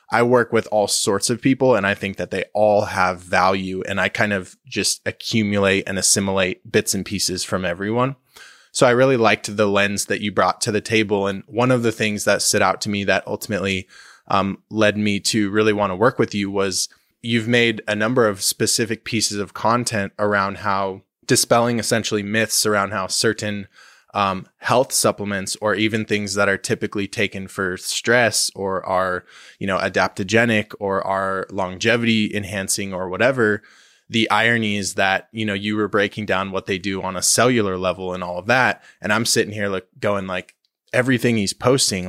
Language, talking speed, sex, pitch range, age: English, 190 wpm, male, 95-110 Hz, 20-39